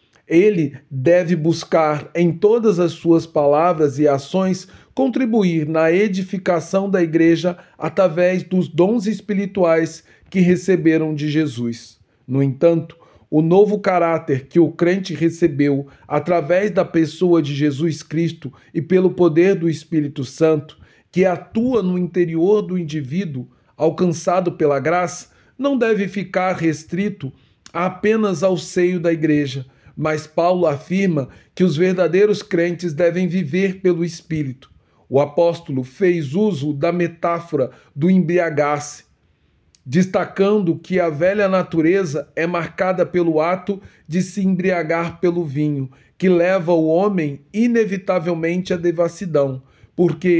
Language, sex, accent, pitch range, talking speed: Portuguese, male, Brazilian, 155-185 Hz, 125 wpm